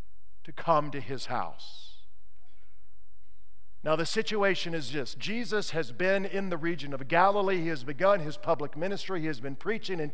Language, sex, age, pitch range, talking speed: English, male, 50-69, 145-200 Hz, 170 wpm